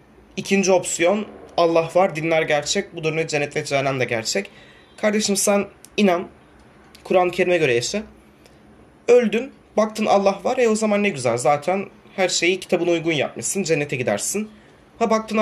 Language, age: Turkish, 30-49